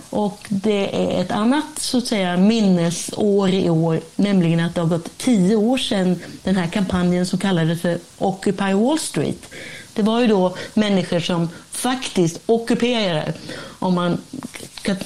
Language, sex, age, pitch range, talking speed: Swedish, female, 30-49, 175-220 Hz, 155 wpm